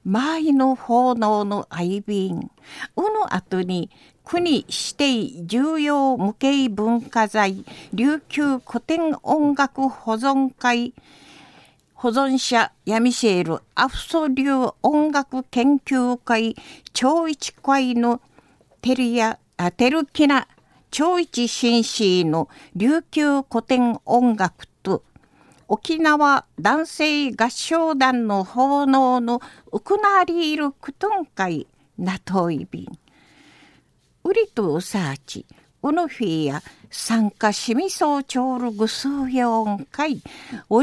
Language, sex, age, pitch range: Japanese, female, 50-69, 225-290 Hz